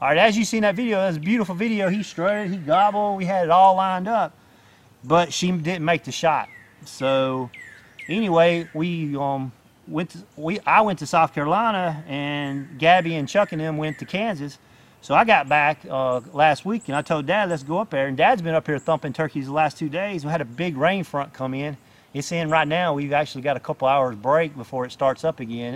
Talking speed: 235 wpm